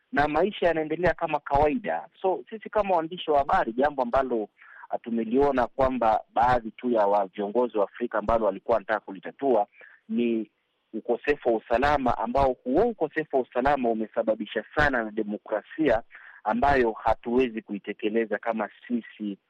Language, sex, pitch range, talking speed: Swahili, male, 105-130 Hz, 135 wpm